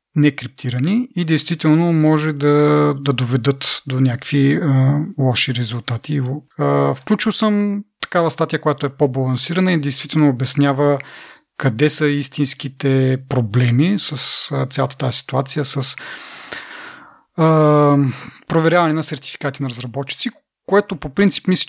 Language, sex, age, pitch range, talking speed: Bulgarian, male, 30-49, 125-150 Hz, 115 wpm